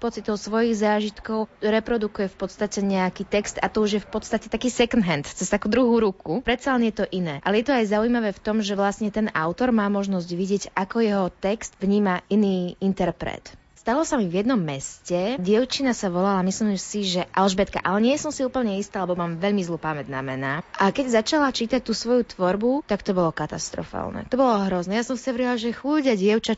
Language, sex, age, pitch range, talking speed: Slovak, female, 20-39, 185-230 Hz, 205 wpm